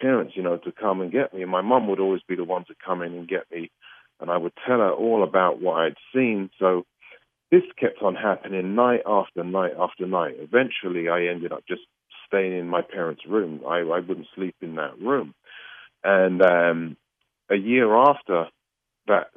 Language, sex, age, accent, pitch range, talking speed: English, male, 40-59, British, 90-120 Hz, 200 wpm